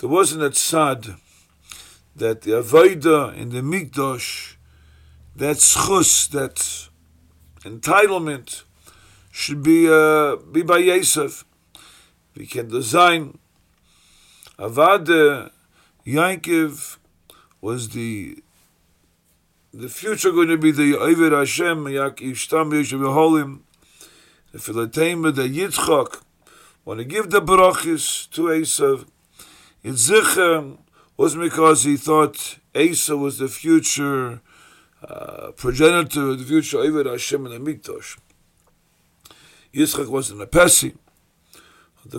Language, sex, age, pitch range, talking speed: English, male, 50-69, 120-165 Hz, 100 wpm